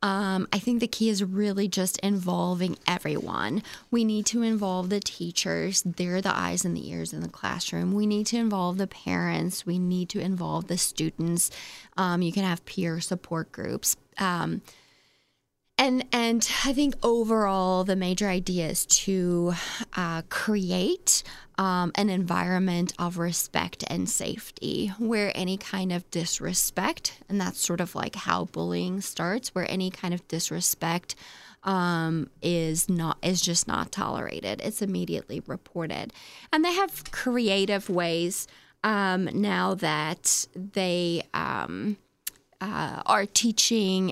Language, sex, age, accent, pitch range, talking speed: English, female, 20-39, American, 175-205 Hz, 145 wpm